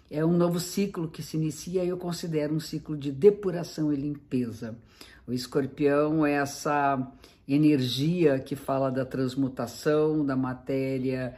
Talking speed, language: 140 wpm, Portuguese